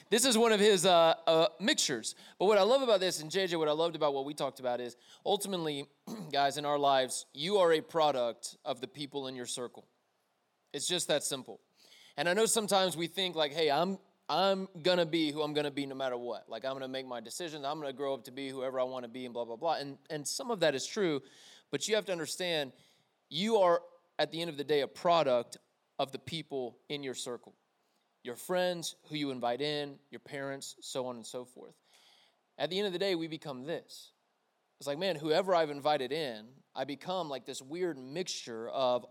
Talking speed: 235 wpm